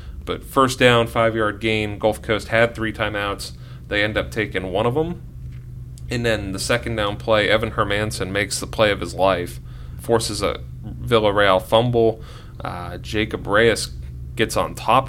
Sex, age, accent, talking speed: male, 30-49, American, 165 wpm